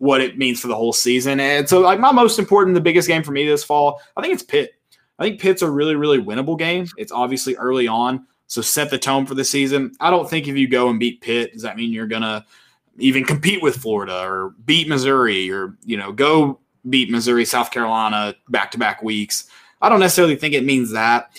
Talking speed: 230 wpm